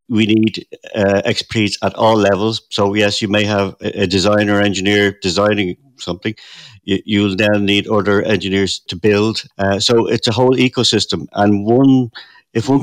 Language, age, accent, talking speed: English, 60-79, British, 170 wpm